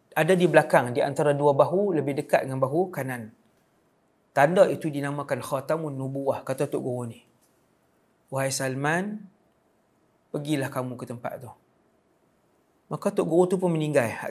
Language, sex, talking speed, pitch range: English, male, 145 wpm, 135-165 Hz